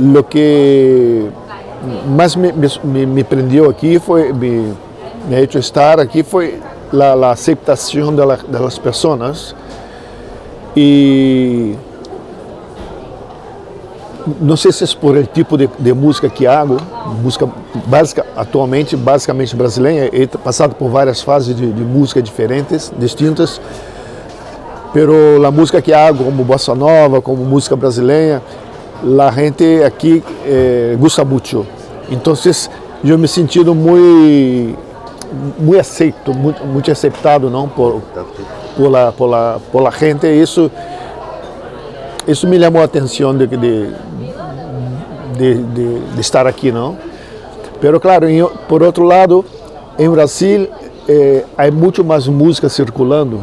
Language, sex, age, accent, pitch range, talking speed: Spanish, male, 50-69, Brazilian, 130-160 Hz, 130 wpm